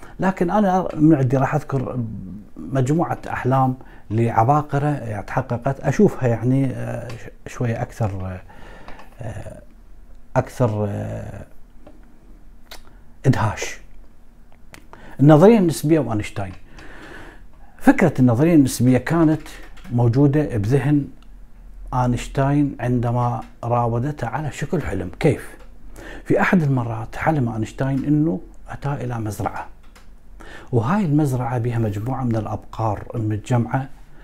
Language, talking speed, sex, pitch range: Arabic, 90 wpm, male, 110-140 Hz